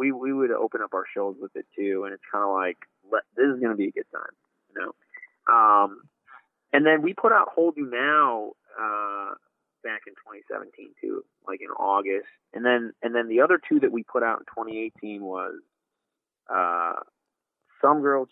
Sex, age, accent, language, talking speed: male, 30-49, American, English, 195 wpm